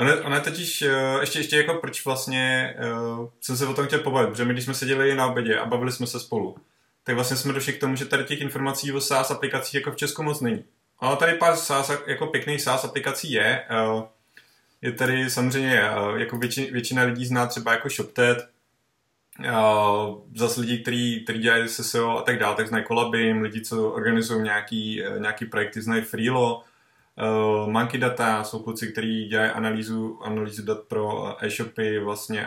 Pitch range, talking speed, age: 110-135 Hz, 190 wpm, 20-39